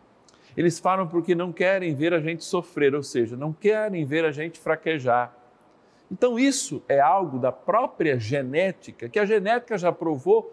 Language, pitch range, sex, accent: Portuguese, 135-190 Hz, male, Brazilian